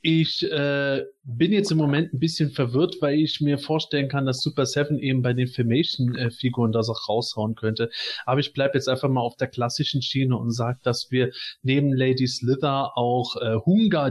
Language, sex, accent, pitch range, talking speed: German, male, German, 125-155 Hz, 195 wpm